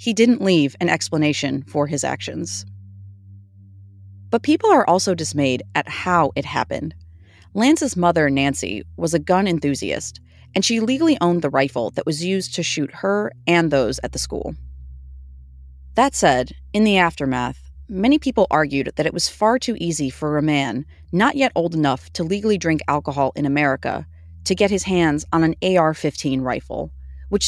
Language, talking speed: English, 170 wpm